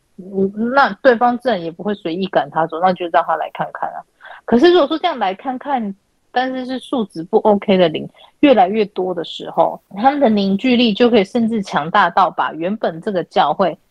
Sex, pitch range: female, 180-240 Hz